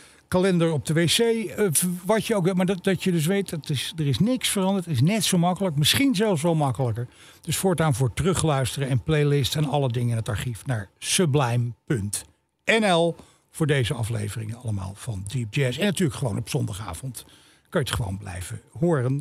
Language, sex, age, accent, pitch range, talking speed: Dutch, male, 60-79, Dutch, 135-190 Hz, 180 wpm